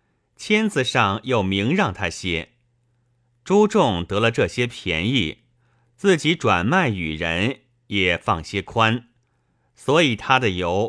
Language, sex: Chinese, male